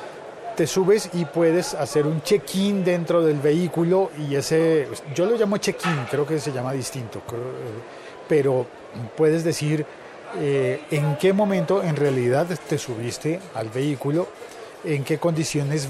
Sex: male